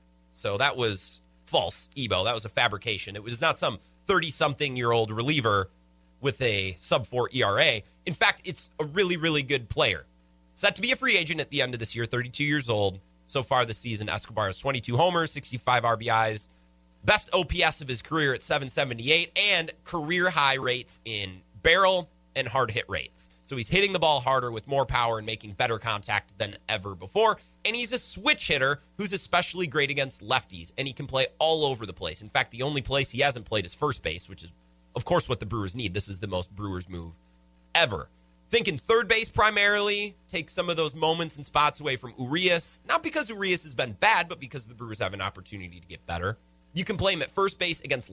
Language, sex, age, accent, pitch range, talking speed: English, male, 30-49, American, 95-160 Hz, 205 wpm